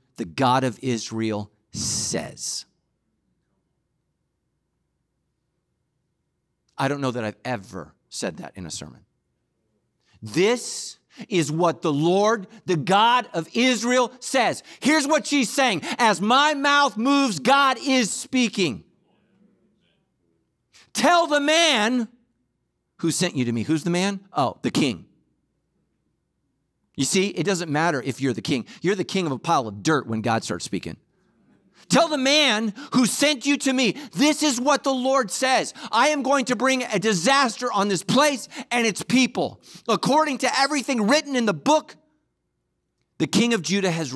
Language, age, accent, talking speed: English, 50-69, American, 150 wpm